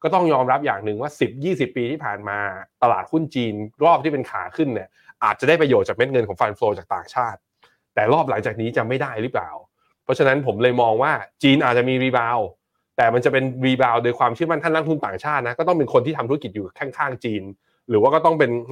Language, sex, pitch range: Thai, male, 110-150 Hz